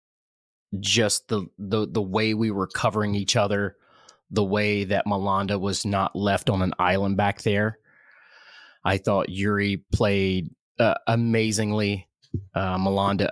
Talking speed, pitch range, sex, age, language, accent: 135 wpm, 95-125 Hz, male, 30-49, English, American